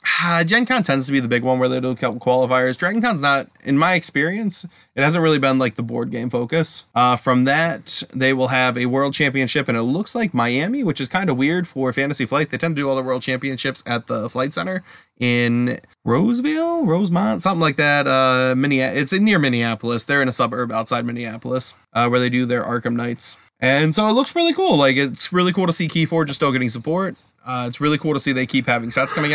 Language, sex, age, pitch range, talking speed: English, male, 20-39, 125-155 Hz, 235 wpm